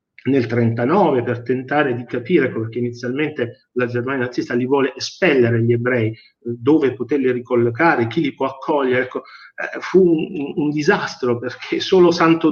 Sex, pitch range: male, 120-150 Hz